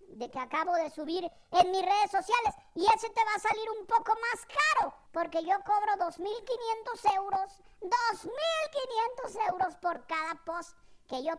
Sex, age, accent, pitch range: male, 50-69, Mexican, 300-410 Hz